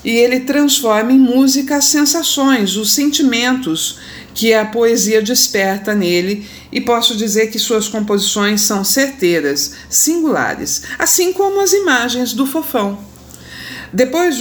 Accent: Brazilian